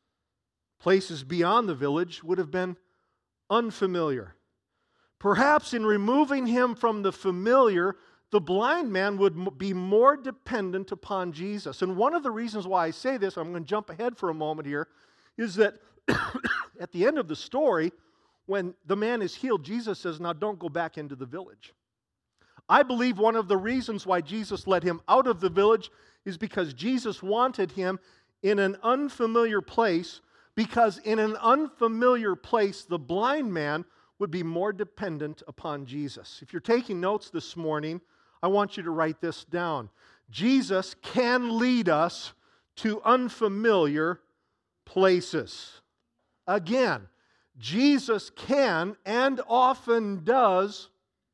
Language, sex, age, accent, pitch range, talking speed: English, male, 50-69, American, 175-235 Hz, 150 wpm